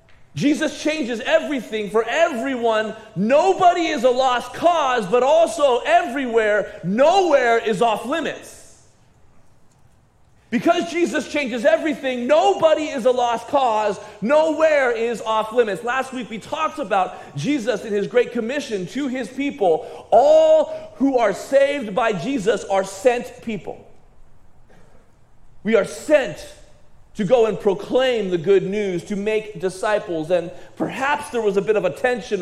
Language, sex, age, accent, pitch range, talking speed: English, male, 40-59, American, 200-285 Hz, 140 wpm